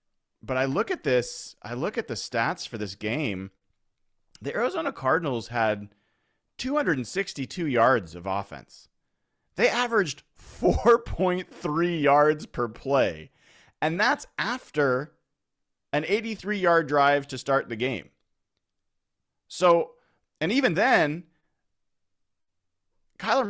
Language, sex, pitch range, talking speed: English, male, 105-145 Hz, 110 wpm